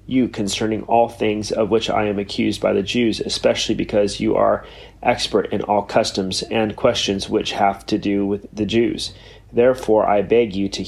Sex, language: male, English